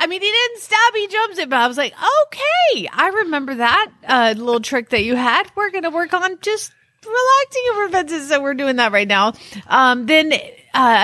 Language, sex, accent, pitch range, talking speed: English, female, American, 200-295 Hz, 215 wpm